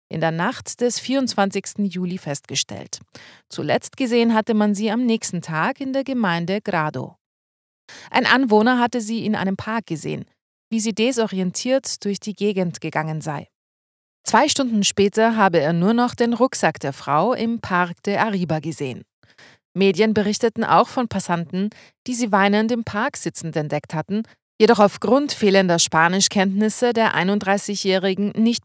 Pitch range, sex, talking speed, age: 170-230 Hz, female, 150 wpm, 30-49